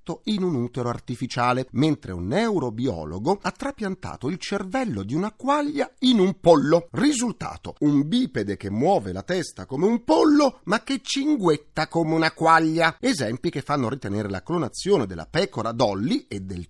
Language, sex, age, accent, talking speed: Italian, male, 40-59, native, 160 wpm